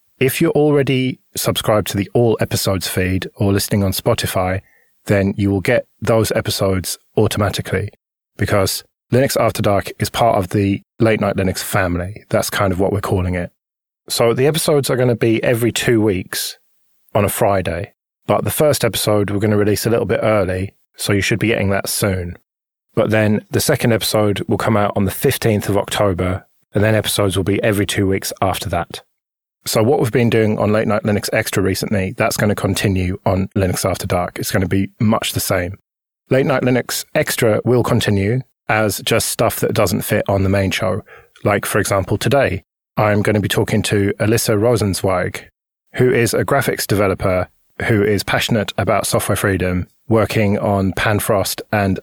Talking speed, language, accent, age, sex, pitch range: 190 wpm, English, British, 20-39, male, 95-115 Hz